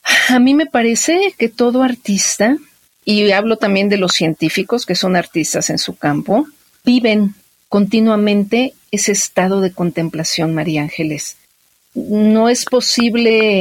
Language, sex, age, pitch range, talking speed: Spanish, female, 50-69, 185-240 Hz, 130 wpm